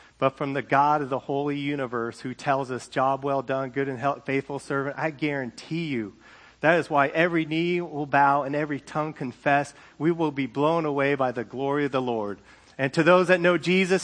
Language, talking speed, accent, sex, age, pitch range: English, 215 wpm, American, male, 40-59, 130-160 Hz